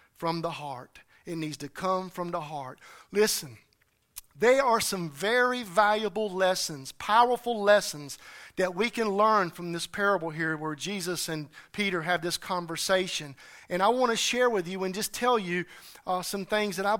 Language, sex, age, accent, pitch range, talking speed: English, male, 40-59, American, 190-245 Hz, 175 wpm